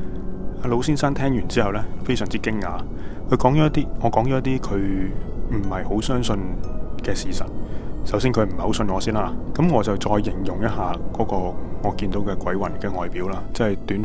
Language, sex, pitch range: Chinese, male, 85-115 Hz